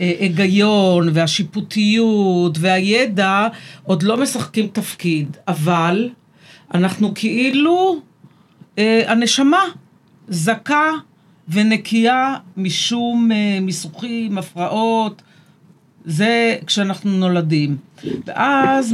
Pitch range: 170-225 Hz